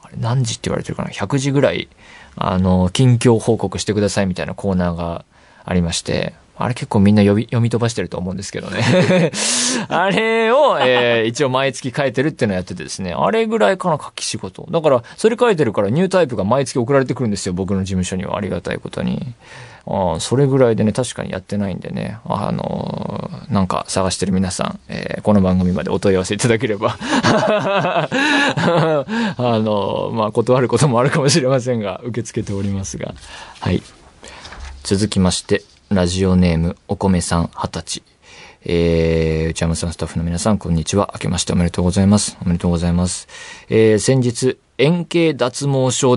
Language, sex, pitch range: Japanese, male, 95-130 Hz